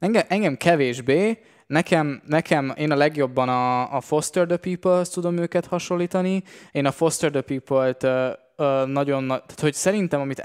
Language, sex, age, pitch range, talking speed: Hungarian, male, 20-39, 130-165 Hz, 160 wpm